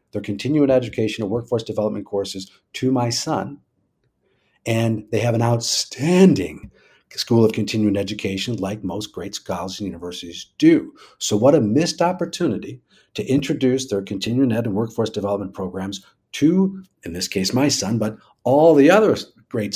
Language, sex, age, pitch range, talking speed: English, male, 50-69, 105-140 Hz, 155 wpm